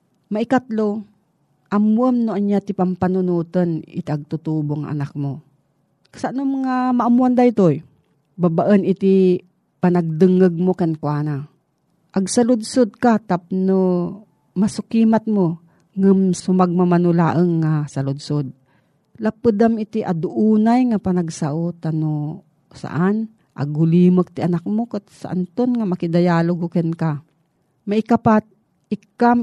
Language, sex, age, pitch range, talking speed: Filipino, female, 40-59, 160-195 Hz, 95 wpm